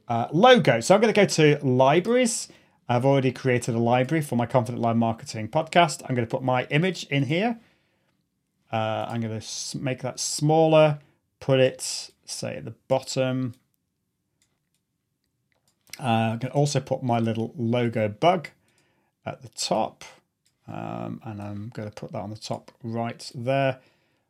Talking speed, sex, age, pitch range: 165 wpm, male, 30-49, 115-140 Hz